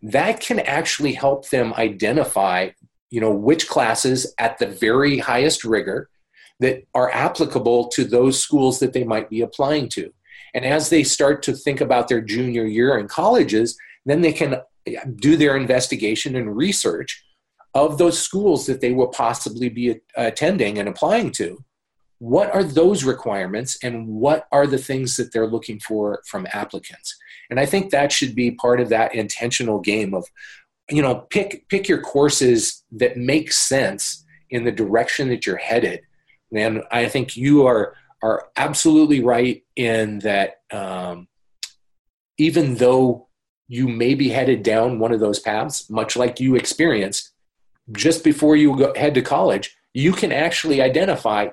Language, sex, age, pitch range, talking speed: English, male, 40-59, 115-145 Hz, 160 wpm